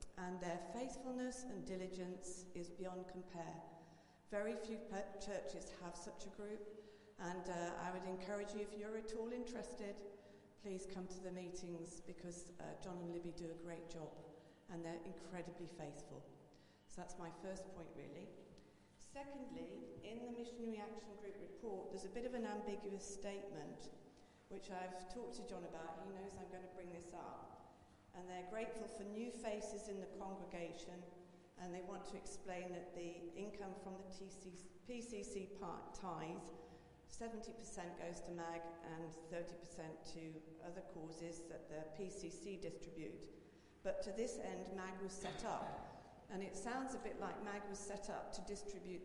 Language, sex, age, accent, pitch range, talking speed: English, female, 40-59, British, 175-205 Hz, 165 wpm